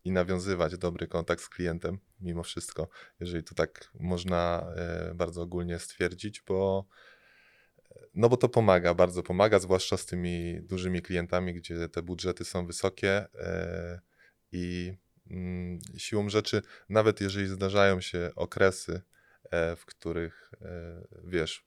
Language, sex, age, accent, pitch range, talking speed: Polish, male, 20-39, native, 85-95 Hz, 115 wpm